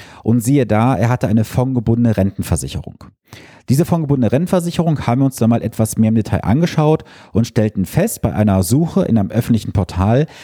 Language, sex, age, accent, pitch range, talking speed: German, male, 40-59, German, 110-145 Hz, 180 wpm